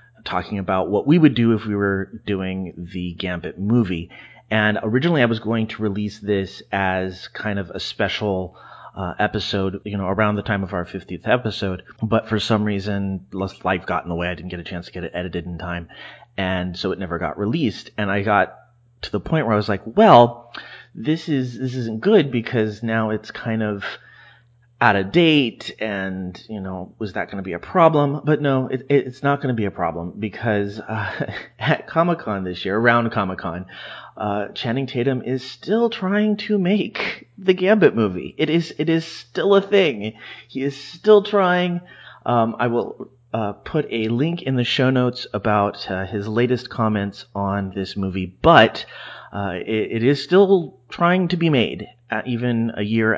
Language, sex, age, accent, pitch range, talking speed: English, male, 30-49, American, 95-130 Hz, 190 wpm